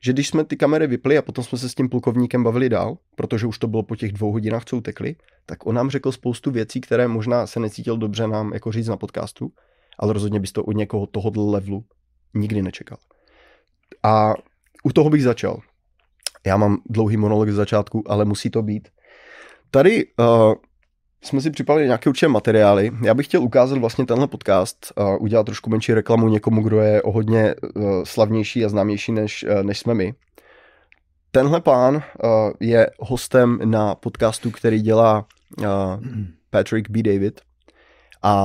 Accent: native